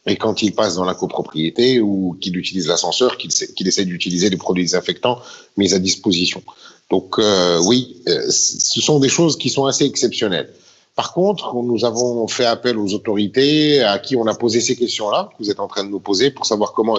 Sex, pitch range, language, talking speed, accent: male, 100-140 Hz, French, 210 wpm, French